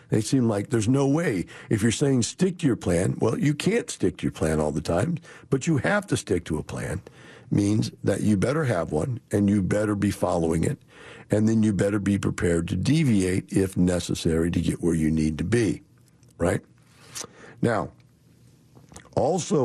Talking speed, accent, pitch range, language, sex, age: 190 wpm, American, 85-115 Hz, English, male, 60-79